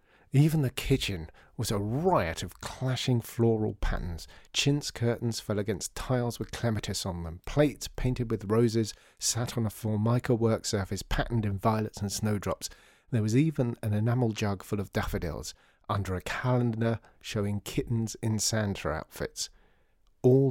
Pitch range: 100-130 Hz